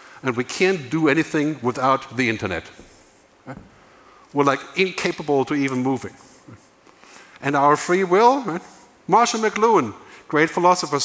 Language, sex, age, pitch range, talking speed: English, male, 50-69, 135-185 Hz, 125 wpm